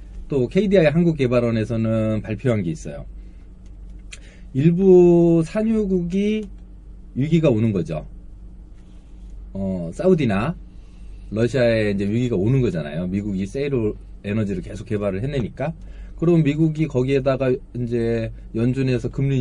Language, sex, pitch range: Korean, male, 110-160 Hz